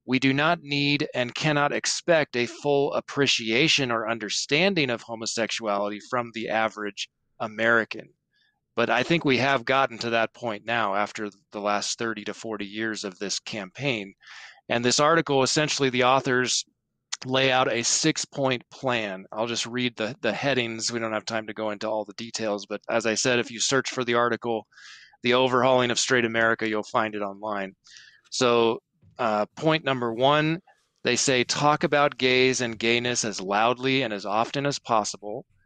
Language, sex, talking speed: English, male, 175 wpm